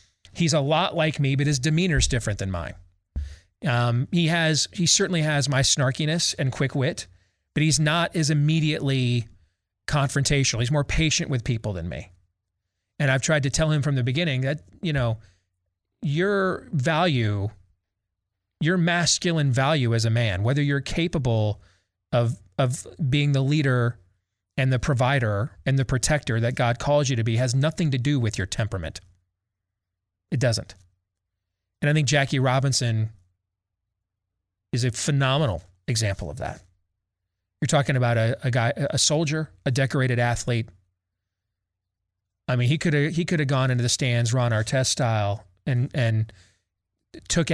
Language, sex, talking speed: English, male, 155 wpm